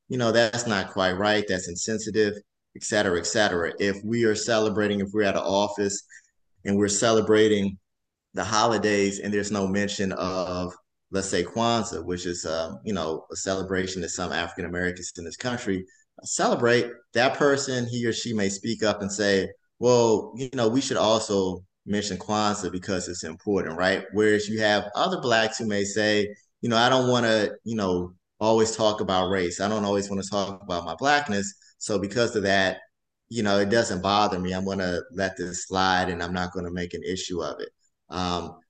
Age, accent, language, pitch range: 20-39, American, English, 95-110 Hz